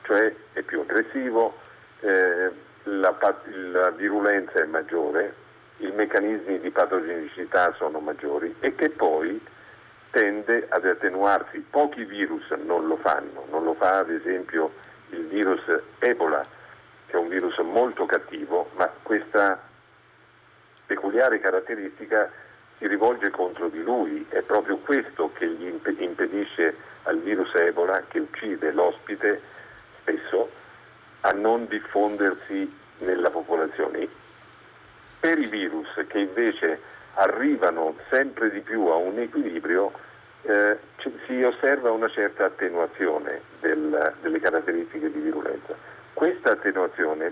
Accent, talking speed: native, 115 wpm